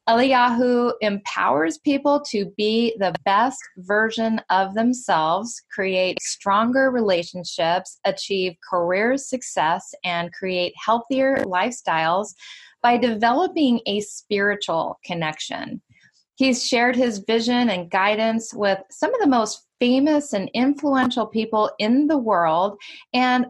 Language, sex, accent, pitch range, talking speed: English, female, American, 190-250 Hz, 110 wpm